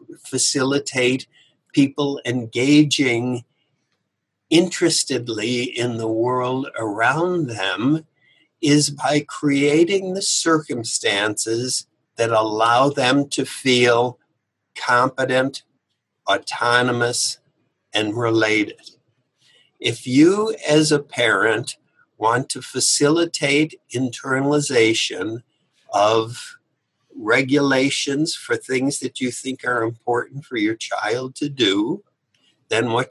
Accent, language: American, English